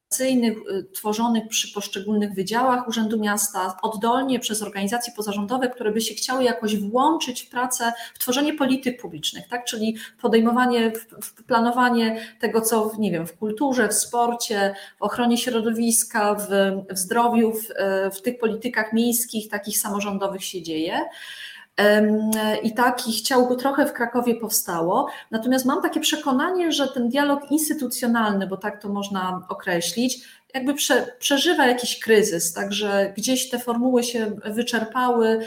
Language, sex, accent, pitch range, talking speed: Polish, female, native, 210-245 Hz, 135 wpm